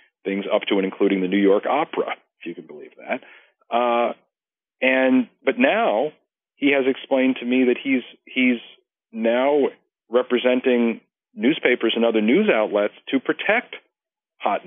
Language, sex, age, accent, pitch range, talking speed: English, male, 40-59, American, 105-130 Hz, 145 wpm